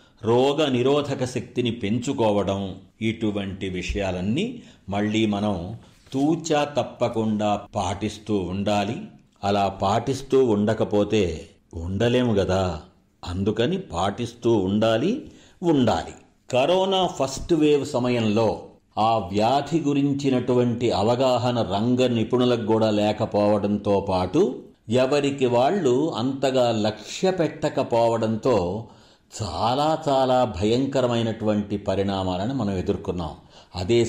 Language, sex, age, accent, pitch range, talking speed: Telugu, male, 50-69, native, 100-125 Hz, 80 wpm